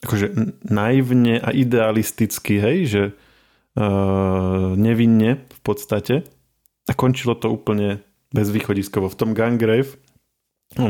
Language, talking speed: Slovak, 110 wpm